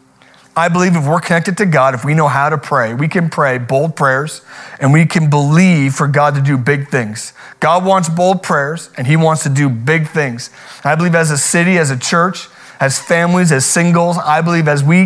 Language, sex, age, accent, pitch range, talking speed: English, male, 30-49, American, 140-170 Hz, 220 wpm